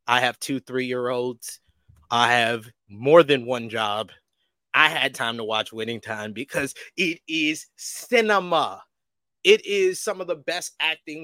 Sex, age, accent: male, 20-39, American